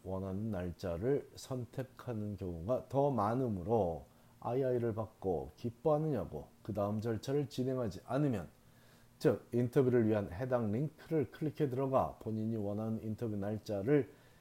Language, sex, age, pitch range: Korean, male, 40-59, 105-140 Hz